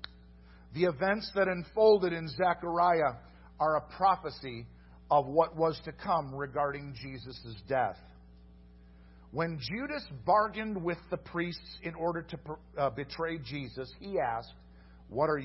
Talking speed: 130 wpm